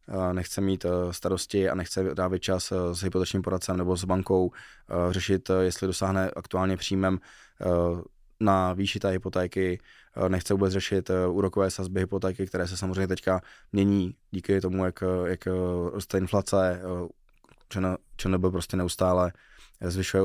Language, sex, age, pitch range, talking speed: Czech, male, 20-39, 90-95 Hz, 130 wpm